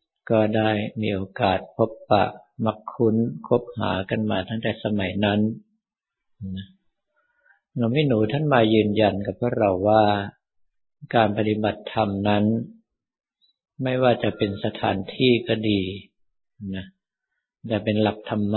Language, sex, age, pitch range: Thai, male, 60-79, 100-115 Hz